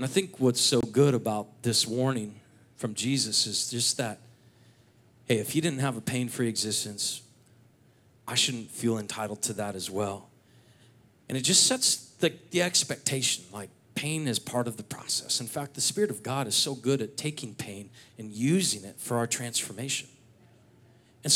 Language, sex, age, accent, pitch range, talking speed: English, male, 40-59, American, 120-180 Hz, 175 wpm